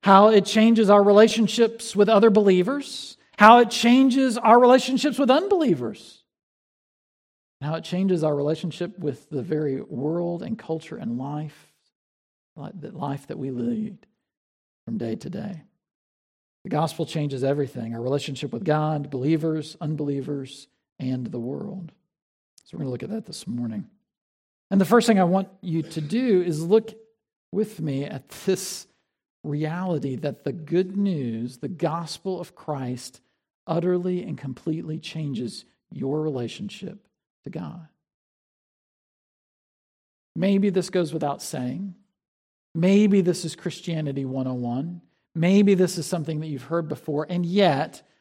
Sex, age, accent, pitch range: male, 50-69, American, 145-200 Hz